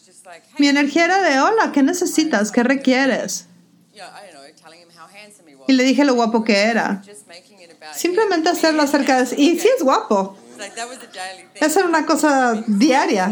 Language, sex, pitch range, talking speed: English, female, 220-290 Hz, 130 wpm